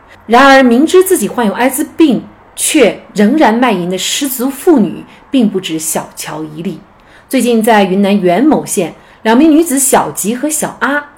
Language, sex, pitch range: Chinese, female, 175-250 Hz